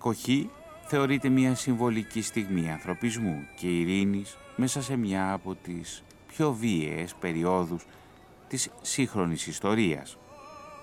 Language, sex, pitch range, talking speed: Greek, male, 85-130 Hz, 105 wpm